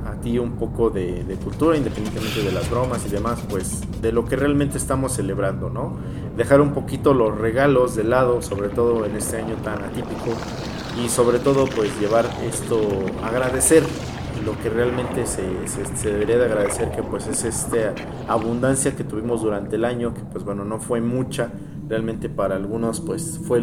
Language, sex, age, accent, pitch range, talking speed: English, male, 40-59, Mexican, 105-130 Hz, 180 wpm